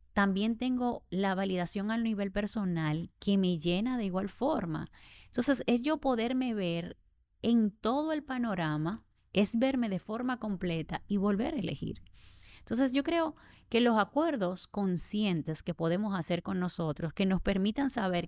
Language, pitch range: Spanish, 170-220 Hz